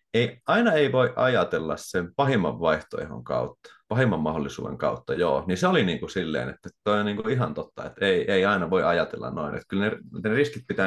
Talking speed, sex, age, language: 210 wpm, male, 30-49, Finnish